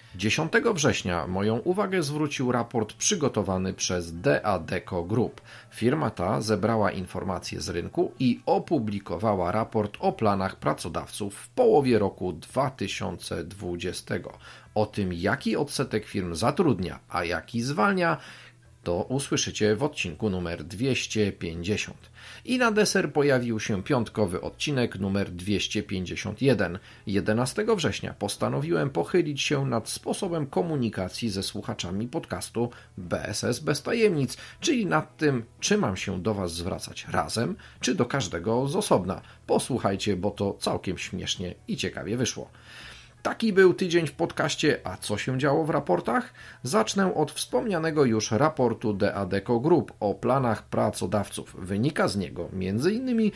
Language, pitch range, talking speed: Polish, 100-140 Hz, 125 wpm